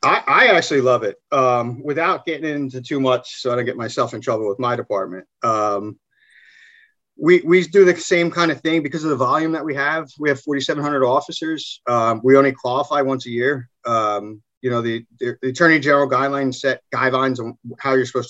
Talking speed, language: 205 wpm, English